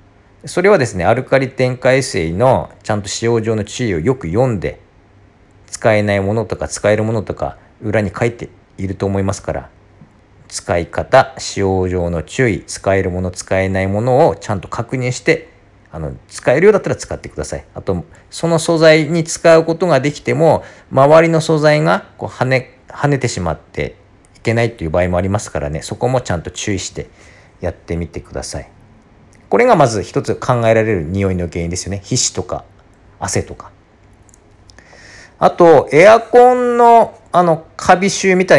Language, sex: Japanese, male